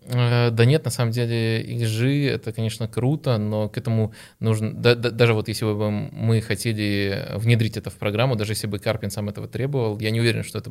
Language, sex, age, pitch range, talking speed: Russian, male, 20-39, 105-115 Hz, 200 wpm